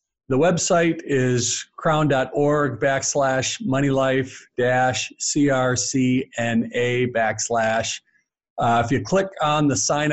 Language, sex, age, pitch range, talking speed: English, male, 50-69, 120-145 Hz, 75 wpm